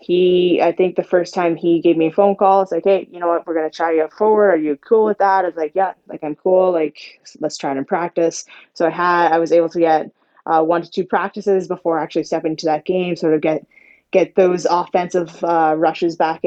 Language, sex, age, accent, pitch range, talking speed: English, female, 20-39, American, 160-180 Hz, 255 wpm